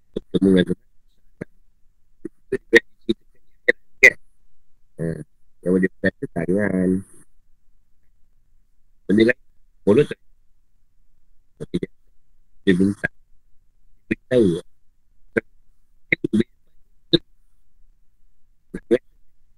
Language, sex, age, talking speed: Malay, male, 50-69, 35 wpm